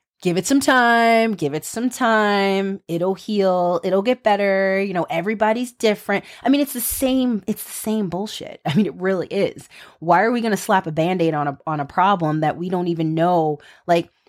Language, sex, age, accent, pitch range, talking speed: English, female, 20-39, American, 175-250 Hz, 210 wpm